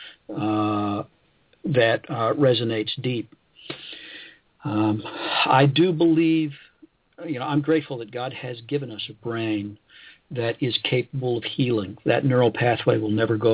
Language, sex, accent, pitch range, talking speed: English, male, American, 110-135 Hz, 135 wpm